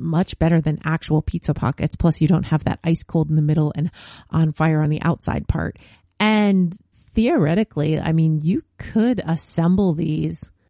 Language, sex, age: English, female, 30-49